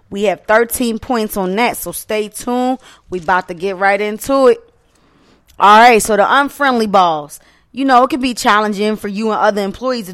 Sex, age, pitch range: female, 20-39, 195-235 Hz